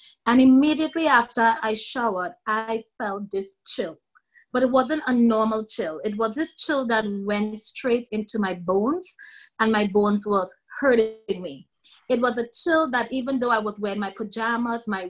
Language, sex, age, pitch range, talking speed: English, female, 30-49, 210-275 Hz, 175 wpm